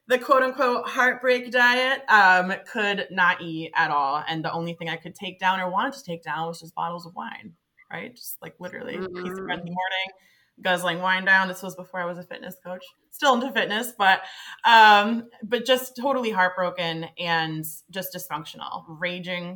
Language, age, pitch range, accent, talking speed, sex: English, 20-39, 165-215 Hz, American, 195 wpm, female